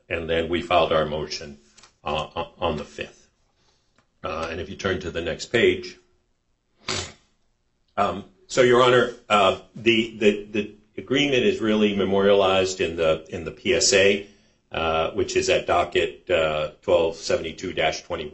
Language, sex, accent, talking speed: English, male, American, 135 wpm